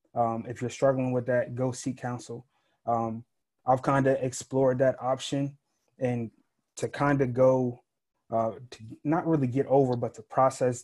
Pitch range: 120-135 Hz